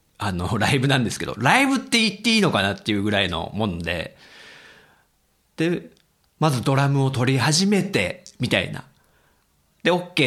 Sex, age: male, 40-59